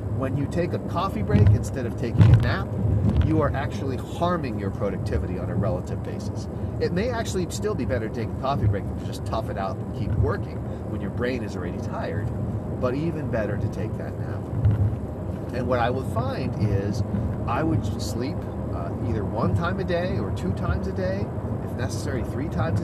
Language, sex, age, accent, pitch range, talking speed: English, male, 40-59, American, 100-110 Hz, 205 wpm